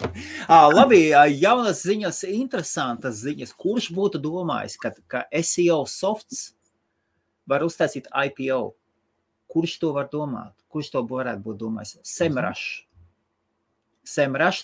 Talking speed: 115 wpm